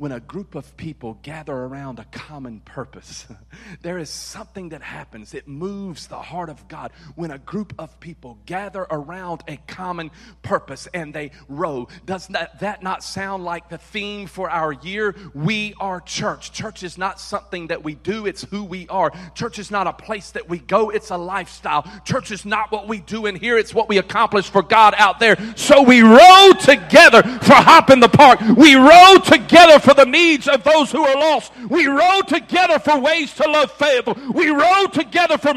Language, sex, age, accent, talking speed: English, male, 40-59, American, 200 wpm